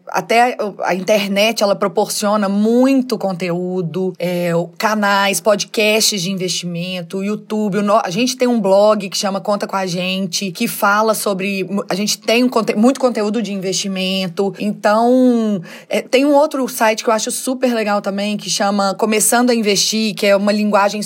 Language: Portuguese